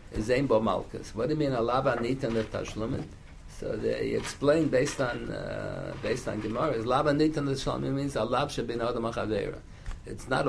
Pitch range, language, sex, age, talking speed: 110-135 Hz, English, male, 60-79, 185 wpm